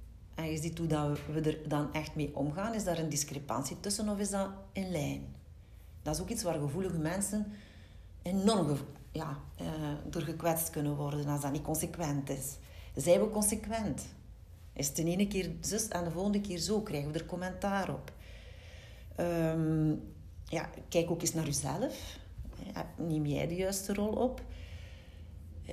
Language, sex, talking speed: Dutch, female, 175 wpm